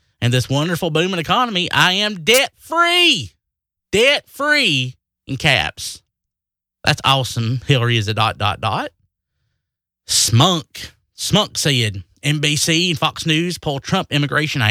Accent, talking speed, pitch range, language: American, 120 wpm, 110-165 Hz, English